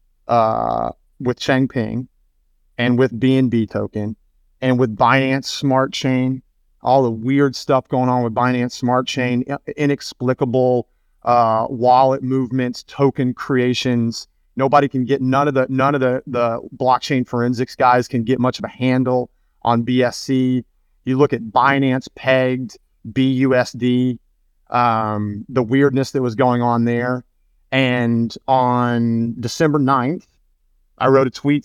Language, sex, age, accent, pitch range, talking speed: English, male, 30-49, American, 120-130 Hz, 135 wpm